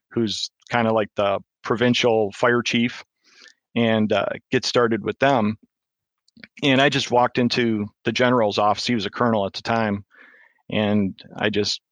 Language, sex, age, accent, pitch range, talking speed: English, male, 40-59, American, 110-125 Hz, 160 wpm